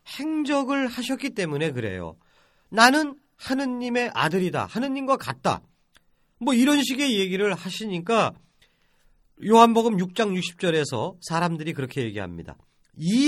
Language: Korean